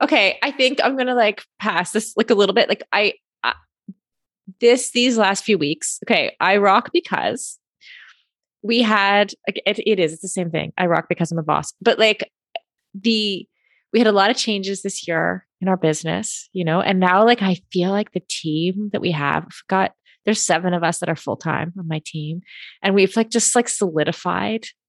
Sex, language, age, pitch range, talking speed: female, English, 20-39, 170-220 Hz, 205 wpm